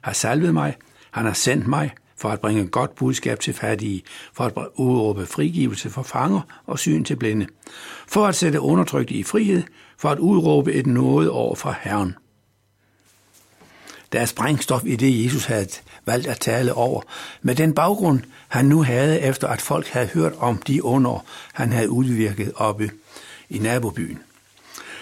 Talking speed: 165 wpm